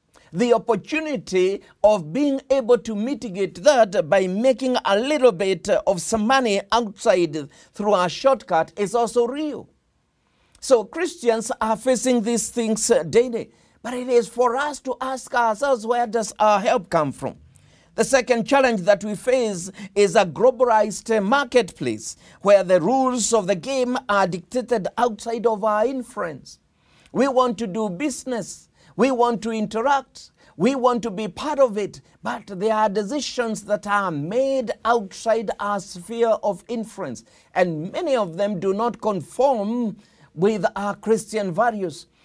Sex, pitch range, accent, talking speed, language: male, 195-245 Hz, South African, 150 wpm, English